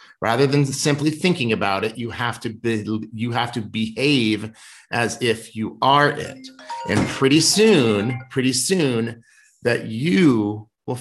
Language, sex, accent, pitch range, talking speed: English, male, American, 115-150 Hz, 145 wpm